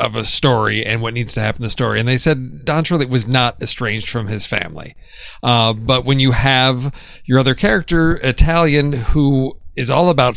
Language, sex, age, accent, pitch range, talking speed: English, male, 40-59, American, 110-135 Hz, 195 wpm